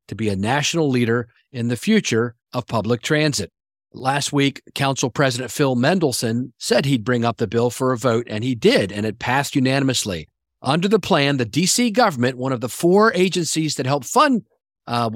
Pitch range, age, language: 120-155 Hz, 50-69, English